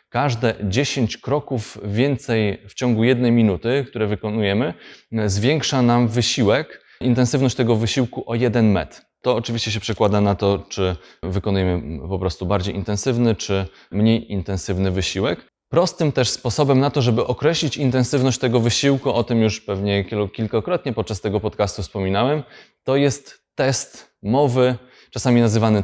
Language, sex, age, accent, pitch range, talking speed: Polish, male, 20-39, native, 100-125 Hz, 140 wpm